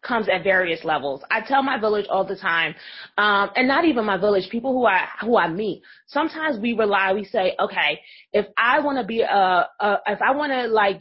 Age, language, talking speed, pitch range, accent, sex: 30-49, English, 225 wpm, 200-265 Hz, American, female